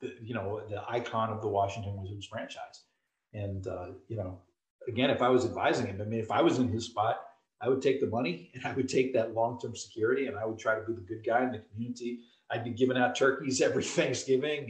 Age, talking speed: 40-59, 235 wpm